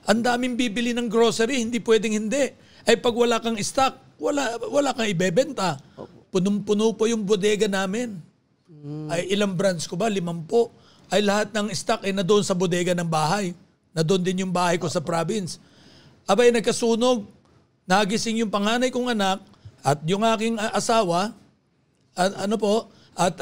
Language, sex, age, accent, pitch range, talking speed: Filipino, male, 50-69, native, 180-225 Hz, 155 wpm